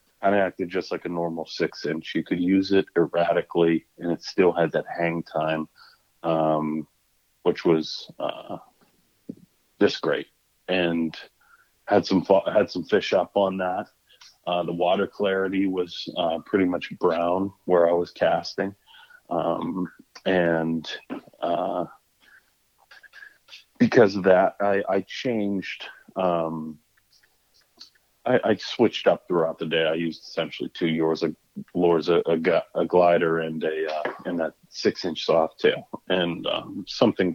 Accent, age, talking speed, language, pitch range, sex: American, 30-49, 140 wpm, English, 80-95 Hz, male